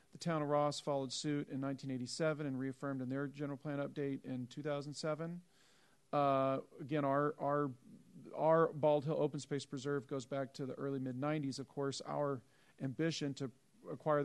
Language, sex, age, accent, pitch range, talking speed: English, male, 40-59, American, 135-155 Hz, 160 wpm